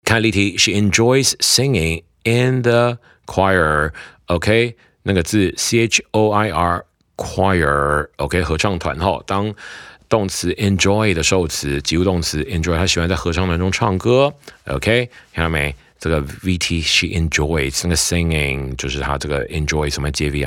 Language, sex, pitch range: Chinese, male, 75-100 Hz